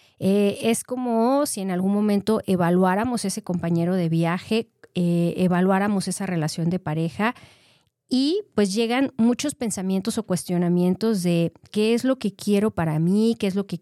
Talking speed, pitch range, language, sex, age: 160 wpm, 180-220 Hz, Spanish, female, 30-49